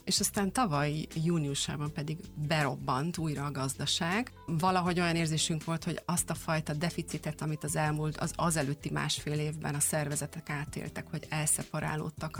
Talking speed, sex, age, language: 145 wpm, female, 30-49, Hungarian